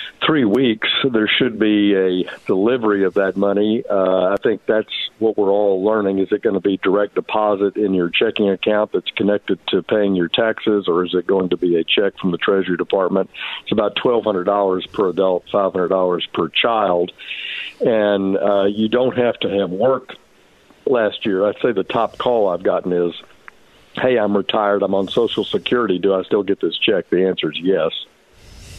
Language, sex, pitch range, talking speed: English, male, 95-120 Hz, 190 wpm